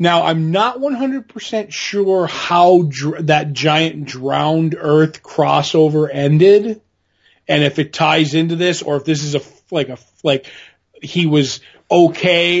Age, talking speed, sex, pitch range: 30-49, 145 wpm, male, 150-180 Hz